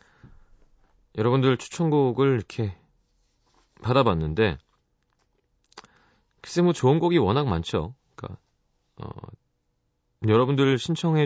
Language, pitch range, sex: Korean, 85-130 Hz, male